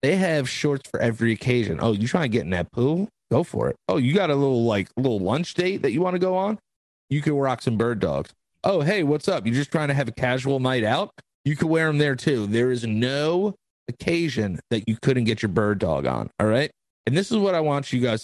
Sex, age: male, 30-49